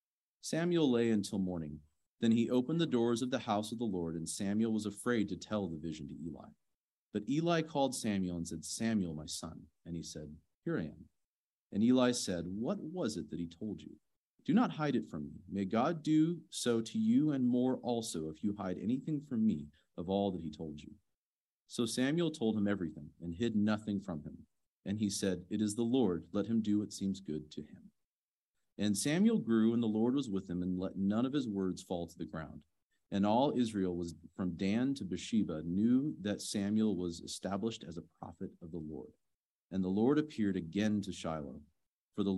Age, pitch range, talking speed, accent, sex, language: 40-59, 85-115 Hz, 210 wpm, American, male, English